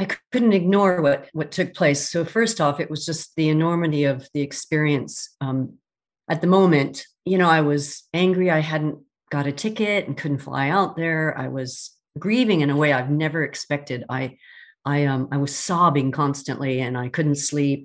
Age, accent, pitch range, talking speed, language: 50-69, American, 140-180 Hz, 190 wpm, English